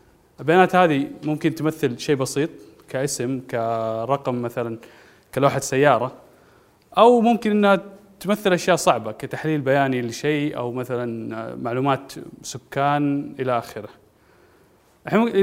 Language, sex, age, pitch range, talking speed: Arabic, male, 20-39, 130-165 Hz, 105 wpm